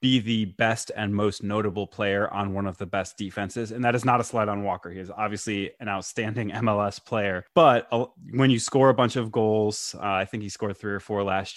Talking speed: 235 wpm